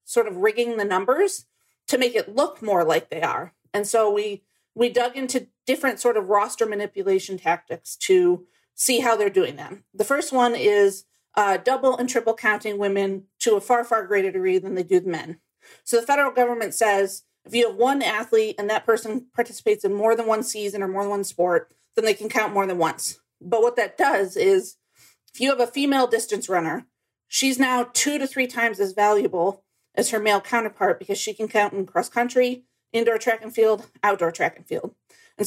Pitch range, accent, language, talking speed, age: 200-245 Hz, American, English, 210 wpm, 40-59